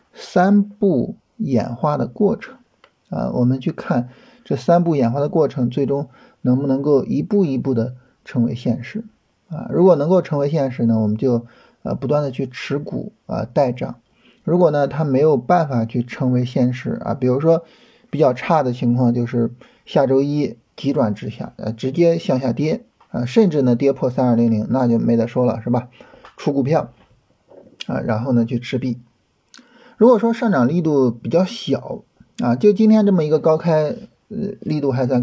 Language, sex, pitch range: Chinese, male, 120-170 Hz